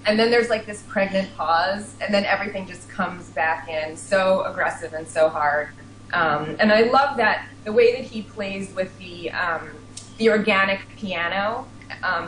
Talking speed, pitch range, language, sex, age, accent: 175 wpm, 165-210 Hz, English, female, 20-39, American